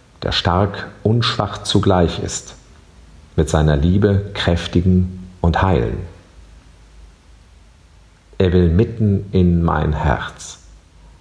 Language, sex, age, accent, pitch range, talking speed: German, male, 50-69, German, 75-95 Hz, 95 wpm